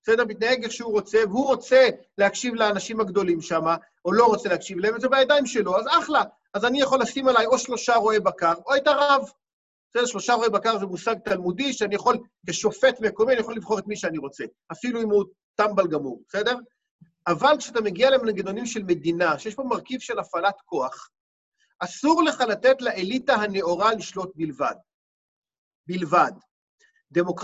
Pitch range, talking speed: 185-255 Hz, 170 wpm